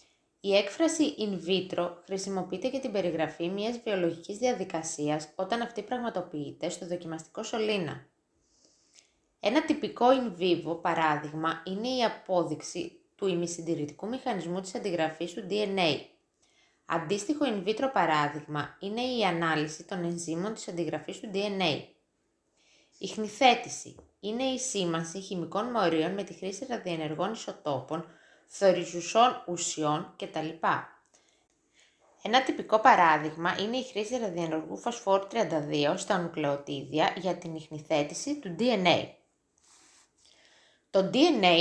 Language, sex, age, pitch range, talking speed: Greek, female, 20-39, 165-220 Hz, 110 wpm